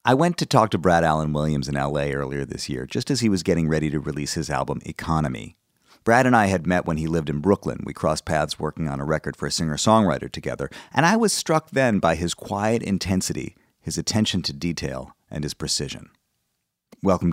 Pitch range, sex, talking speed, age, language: 75-105 Hz, male, 215 wpm, 40-59, English